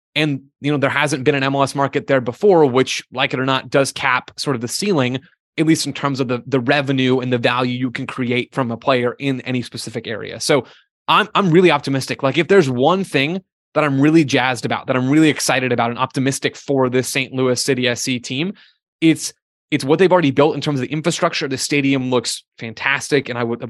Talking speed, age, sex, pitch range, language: 230 wpm, 20-39, male, 130-150 Hz, English